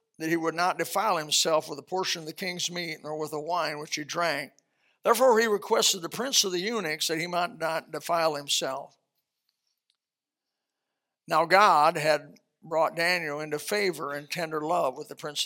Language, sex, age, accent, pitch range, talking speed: English, male, 60-79, American, 155-185 Hz, 185 wpm